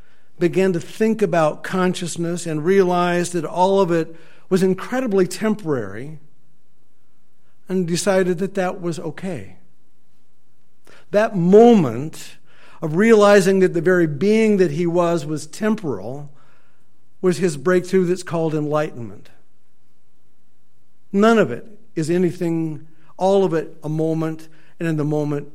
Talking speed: 125 wpm